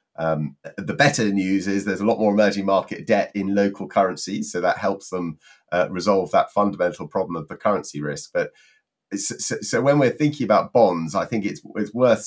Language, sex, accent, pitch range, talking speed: English, male, British, 80-105 Hz, 200 wpm